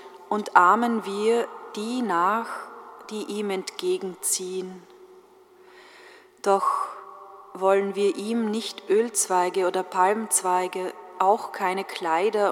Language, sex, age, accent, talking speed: German, female, 30-49, German, 90 wpm